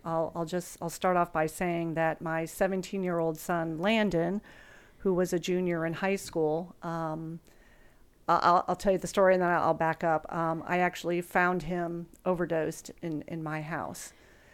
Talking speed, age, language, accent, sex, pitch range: 175 wpm, 40-59, English, American, female, 165-185 Hz